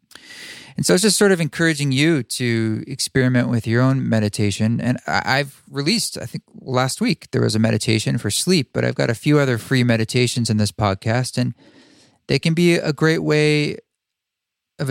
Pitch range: 115-150 Hz